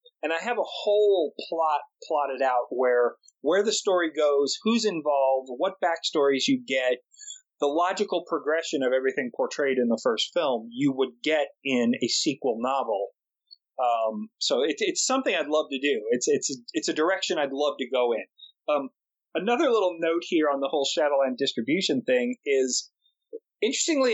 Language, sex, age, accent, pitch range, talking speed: English, male, 30-49, American, 135-215 Hz, 165 wpm